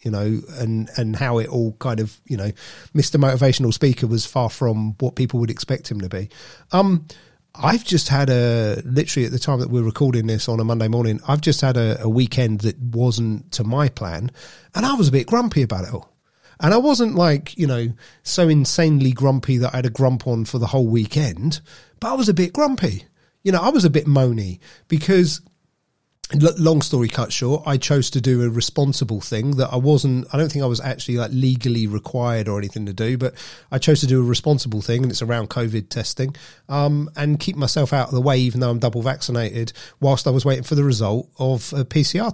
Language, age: English, 30-49